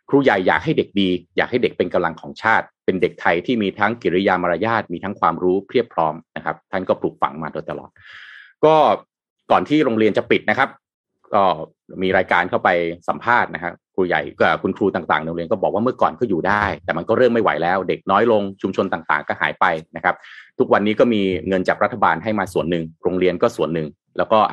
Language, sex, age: Thai, male, 30-49